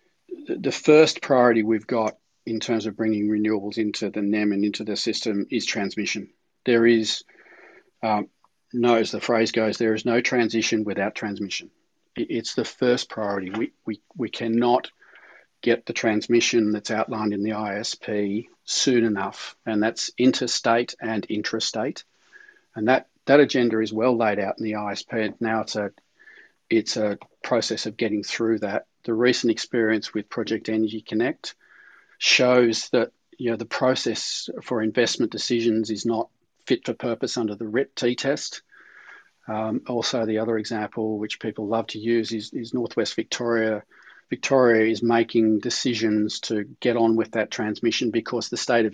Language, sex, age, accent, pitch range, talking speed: English, male, 40-59, Australian, 110-120 Hz, 160 wpm